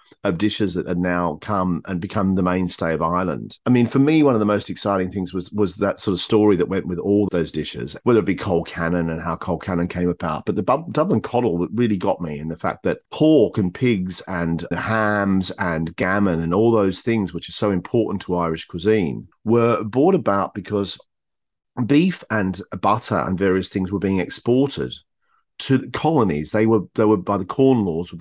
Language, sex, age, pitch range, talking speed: English, male, 40-59, 95-120 Hz, 215 wpm